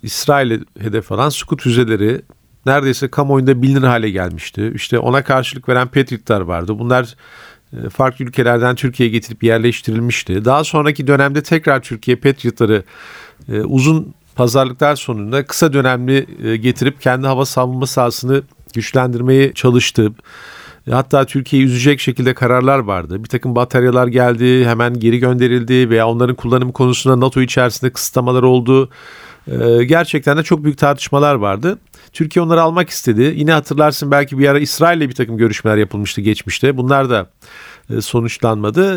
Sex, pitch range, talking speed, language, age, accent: male, 120-145 Hz, 130 wpm, Turkish, 50-69, native